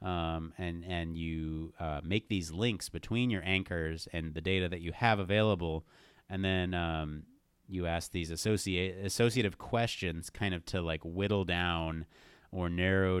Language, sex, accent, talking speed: English, male, American, 155 wpm